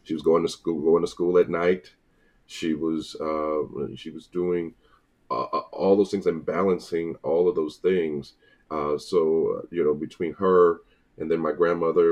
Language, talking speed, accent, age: English, 180 wpm, American, 30-49